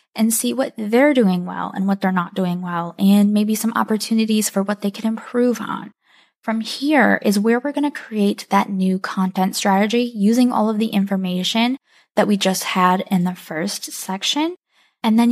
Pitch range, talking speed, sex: 185-225 Hz, 190 wpm, female